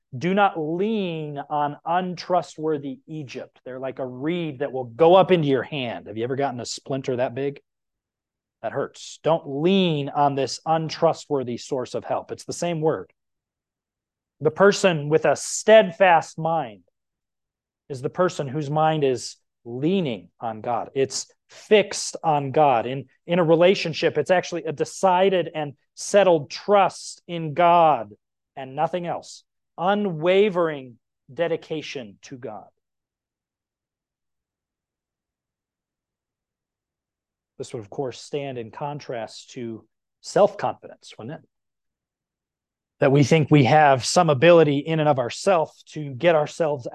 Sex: male